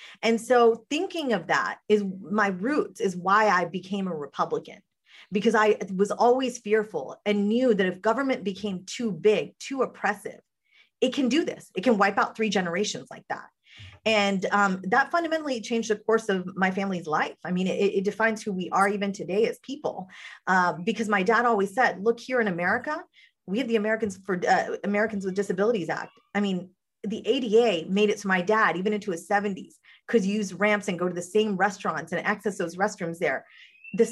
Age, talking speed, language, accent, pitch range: 30-49, 200 wpm, English, American, 185-230 Hz